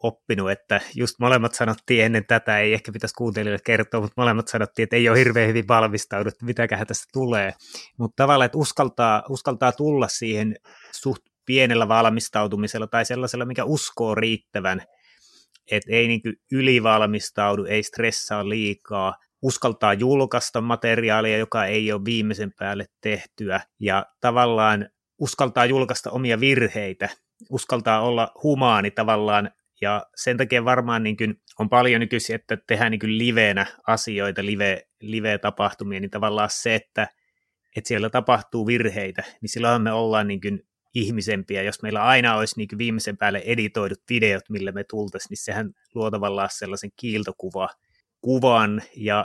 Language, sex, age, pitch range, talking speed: Finnish, male, 30-49, 105-120 Hz, 140 wpm